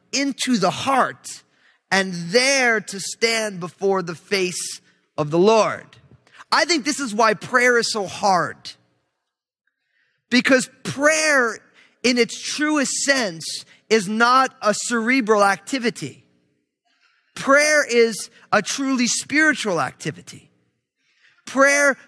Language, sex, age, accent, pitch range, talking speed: English, male, 30-49, American, 185-250 Hz, 110 wpm